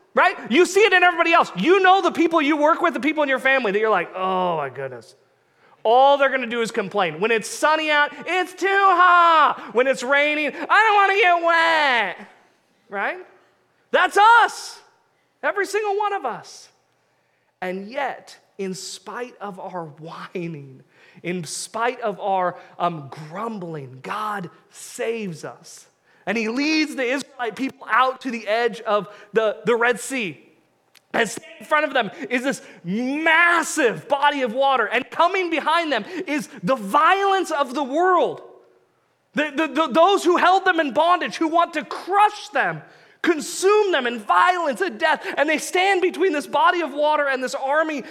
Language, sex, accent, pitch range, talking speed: English, male, American, 225-335 Hz, 170 wpm